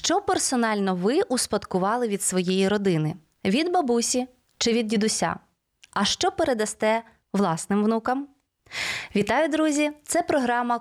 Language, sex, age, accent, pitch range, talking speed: Ukrainian, female, 20-39, native, 200-265 Hz, 115 wpm